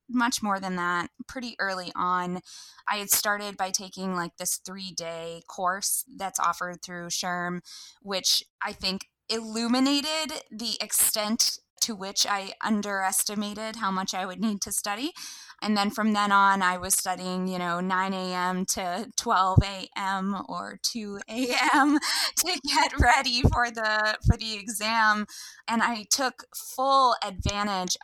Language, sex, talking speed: English, female, 140 wpm